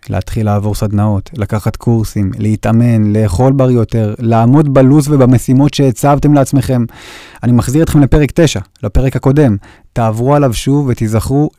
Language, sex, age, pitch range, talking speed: Hebrew, male, 30-49, 110-140 Hz, 130 wpm